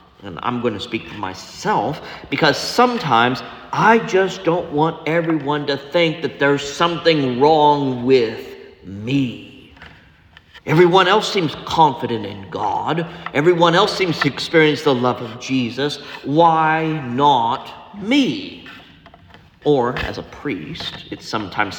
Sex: male